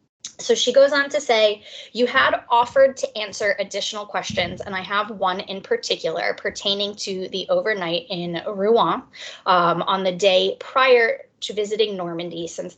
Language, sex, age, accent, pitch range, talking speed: English, female, 20-39, American, 190-260 Hz, 160 wpm